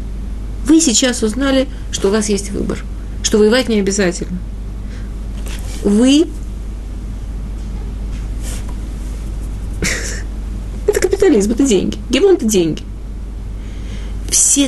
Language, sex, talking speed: Russian, female, 85 wpm